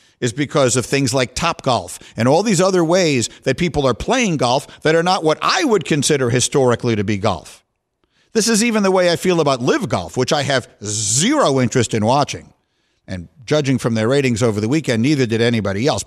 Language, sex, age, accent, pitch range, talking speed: English, male, 50-69, American, 130-185 Hz, 215 wpm